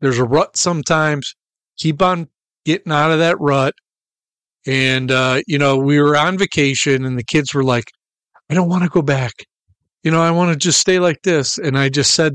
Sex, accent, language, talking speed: male, American, English, 210 wpm